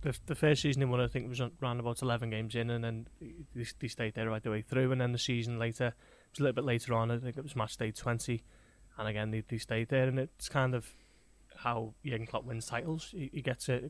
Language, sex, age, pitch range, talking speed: English, male, 20-39, 115-135 Hz, 270 wpm